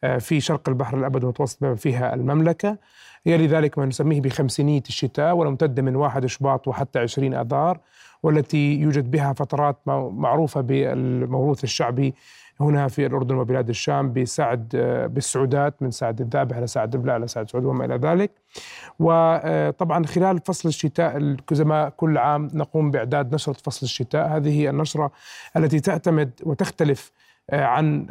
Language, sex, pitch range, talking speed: Arabic, male, 135-160 Hz, 140 wpm